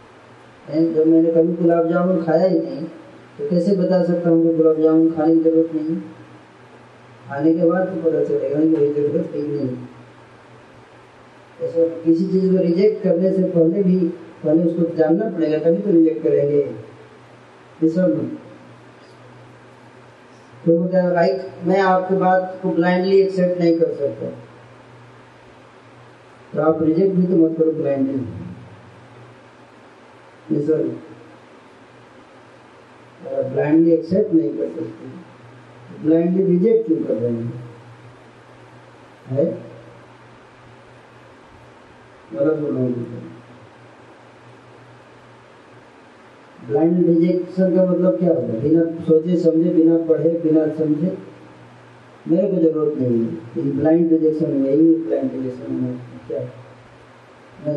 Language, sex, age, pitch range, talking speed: Hindi, female, 20-39, 140-175 Hz, 65 wpm